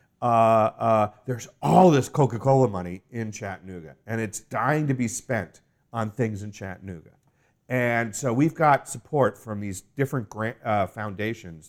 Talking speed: 155 wpm